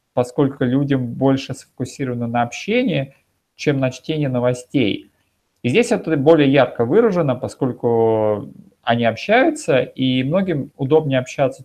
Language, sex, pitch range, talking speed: Russian, male, 125-160 Hz, 120 wpm